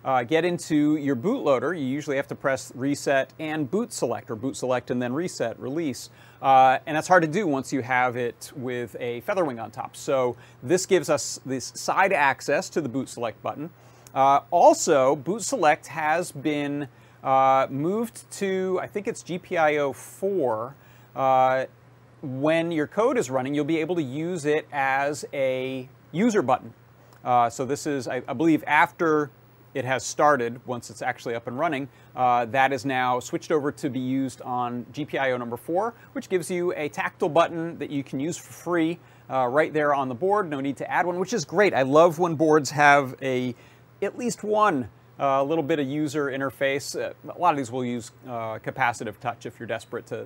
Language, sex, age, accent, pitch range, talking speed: English, male, 30-49, American, 125-160 Hz, 195 wpm